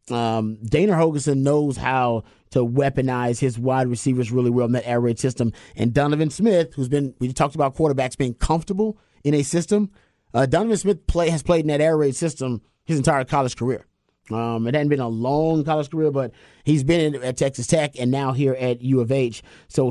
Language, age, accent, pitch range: English, 30-49, American, 125-145 Hz